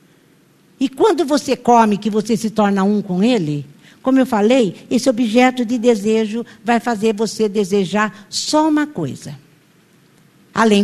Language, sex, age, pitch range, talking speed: Portuguese, female, 50-69, 190-260 Hz, 145 wpm